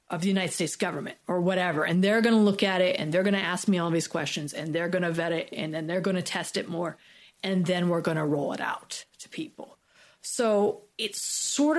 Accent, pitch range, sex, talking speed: American, 170-200 Hz, female, 255 wpm